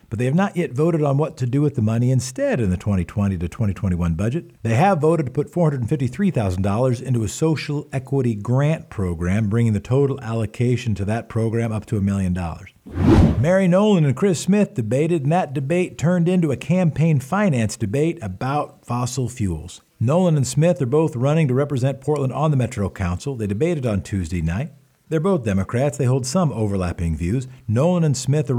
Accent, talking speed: American, 190 wpm